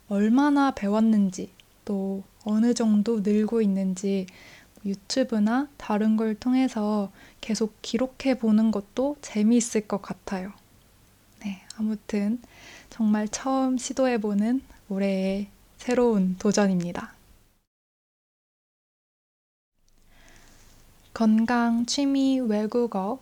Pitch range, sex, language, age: 195-240 Hz, female, Korean, 20-39